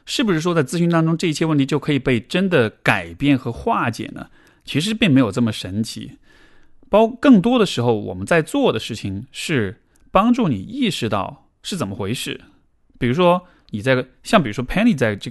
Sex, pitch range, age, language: male, 110-165 Hz, 20-39, Chinese